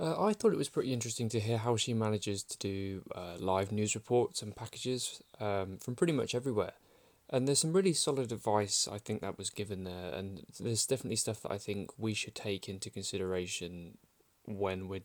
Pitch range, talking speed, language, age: 95-110 Hz, 205 wpm, English, 20-39